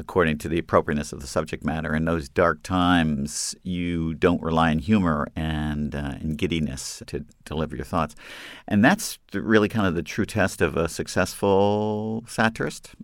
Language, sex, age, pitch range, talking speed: English, male, 50-69, 80-95 Hz, 175 wpm